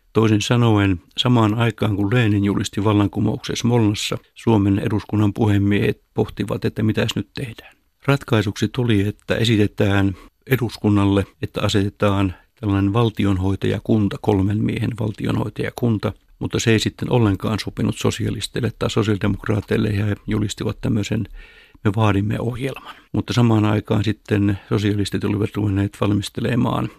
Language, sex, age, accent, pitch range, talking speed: Finnish, male, 60-79, native, 100-115 Hz, 120 wpm